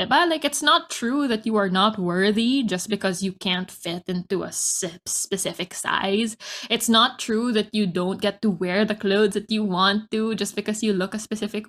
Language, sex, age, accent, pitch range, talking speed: English, female, 10-29, Filipino, 195-260 Hz, 205 wpm